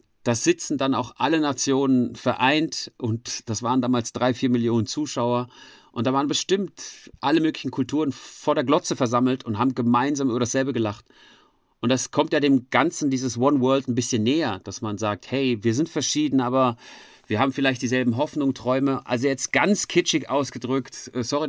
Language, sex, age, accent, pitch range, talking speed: German, male, 40-59, German, 120-145 Hz, 180 wpm